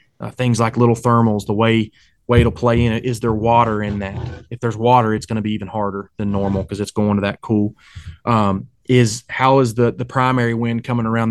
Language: English